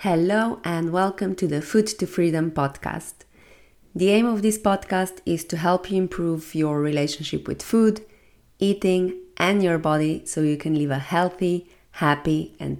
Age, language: 30-49, English